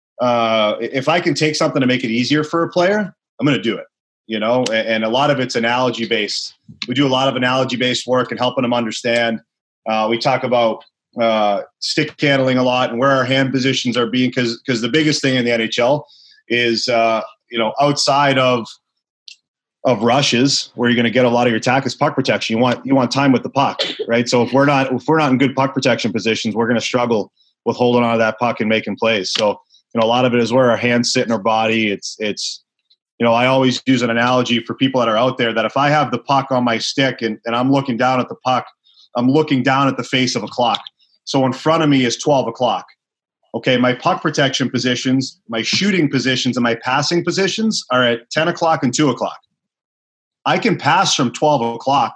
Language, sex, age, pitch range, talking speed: English, male, 30-49, 120-140 Hz, 235 wpm